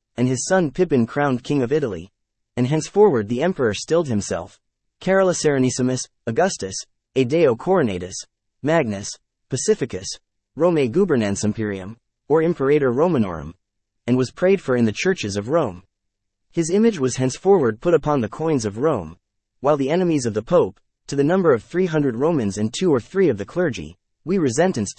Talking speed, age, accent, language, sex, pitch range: 160 wpm, 30-49, American, English, male, 105-160 Hz